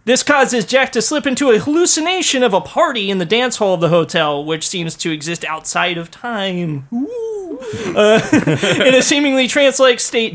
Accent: American